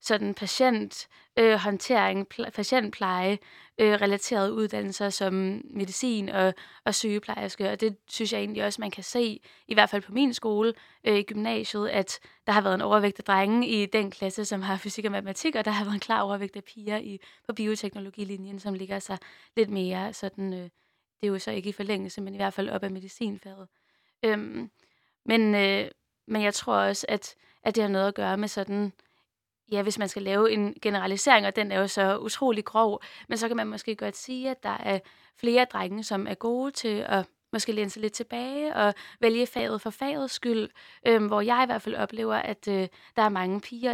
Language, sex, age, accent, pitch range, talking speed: Danish, female, 20-39, native, 195-225 Hz, 200 wpm